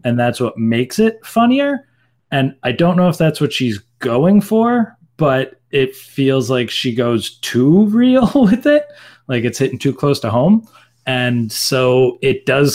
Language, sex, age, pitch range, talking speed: English, male, 30-49, 115-135 Hz, 175 wpm